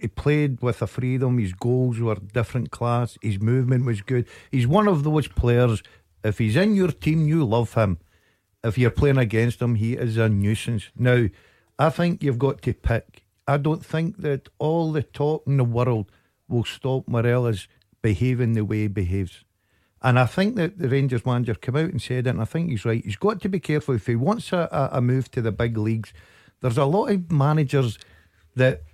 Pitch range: 115-150 Hz